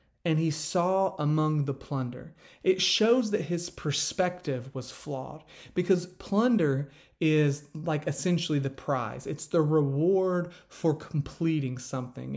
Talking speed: 125 wpm